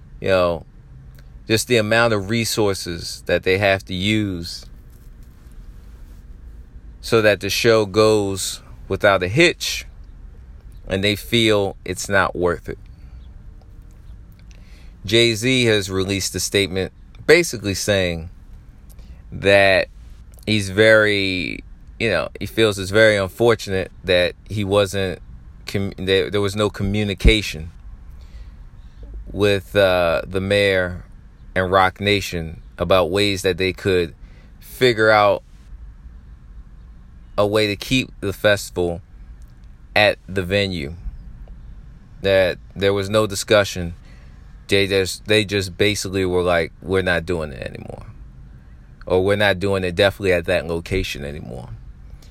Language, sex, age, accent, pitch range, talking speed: English, male, 30-49, American, 80-100 Hz, 115 wpm